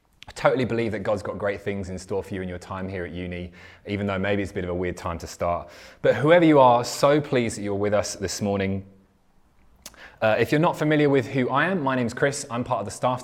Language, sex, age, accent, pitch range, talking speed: English, male, 20-39, British, 100-125 Hz, 270 wpm